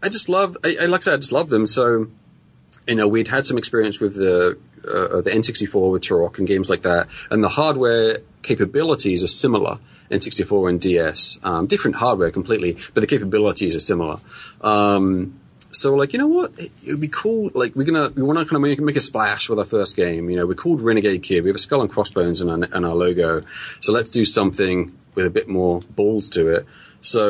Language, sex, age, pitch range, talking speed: English, male, 30-49, 90-130 Hz, 225 wpm